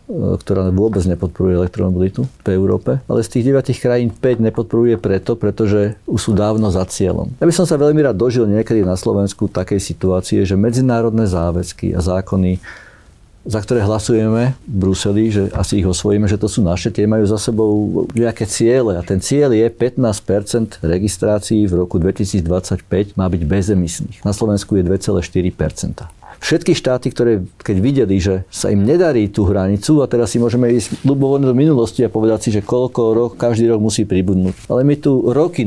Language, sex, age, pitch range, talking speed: Slovak, male, 50-69, 90-115 Hz, 175 wpm